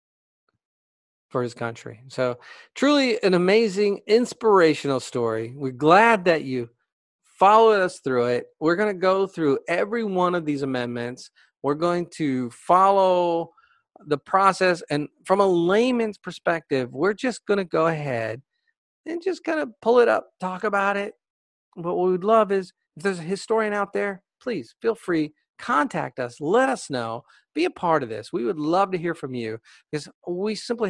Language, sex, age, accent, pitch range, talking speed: English, male, 40-59, American, 135-205 Hz, 170 wpm